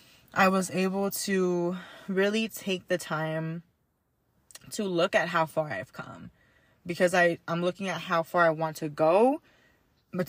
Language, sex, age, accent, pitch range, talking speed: English, female, 20-39, American, 170-205 Hz, 150 wpm